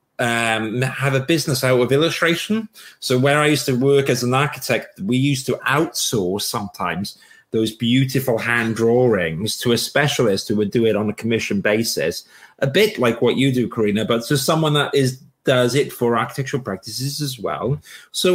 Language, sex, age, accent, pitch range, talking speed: English, male, 30-49, British, 110-140 Hz, 185 wpm